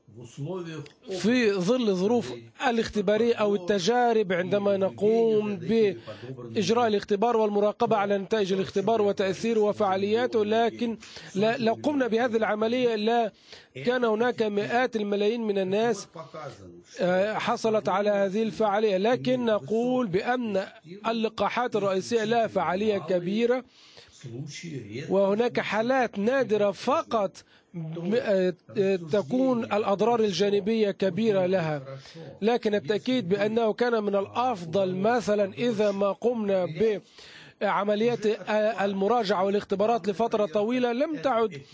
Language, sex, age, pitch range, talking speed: Arabic, male, 40-59, 195-230 Hz, 95 wpm